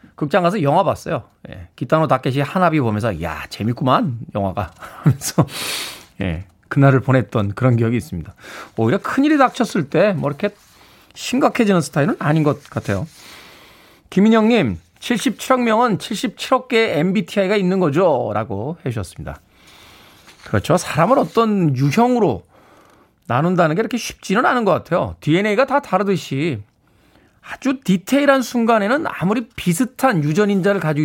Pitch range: 130-210 Hz